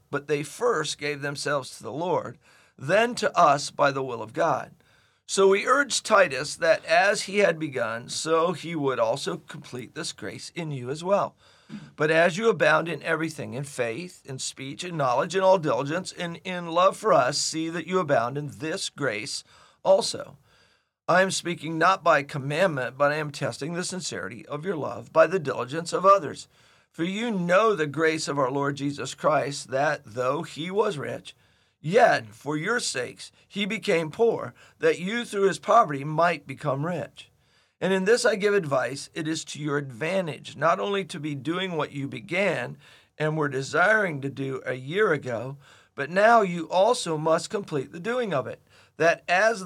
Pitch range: 145-190 Hz